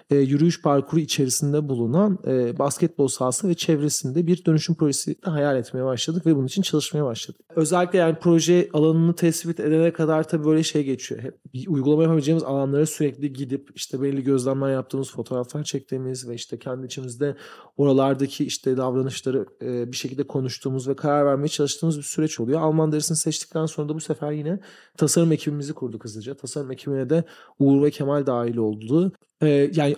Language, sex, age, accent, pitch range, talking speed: Turkish, male, 40-59, native, 130-155 Hz, 170 wpm